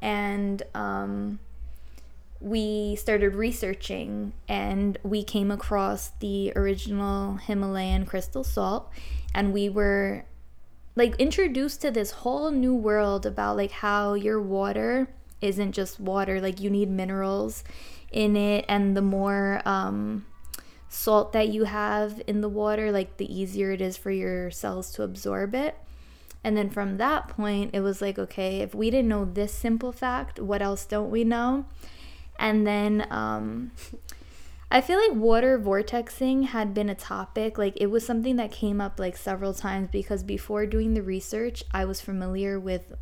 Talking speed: 155 wpm